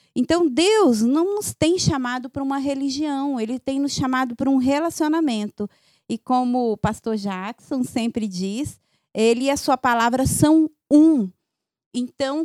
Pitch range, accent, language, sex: 225-290 Hz, Brazilian, Portuguese, female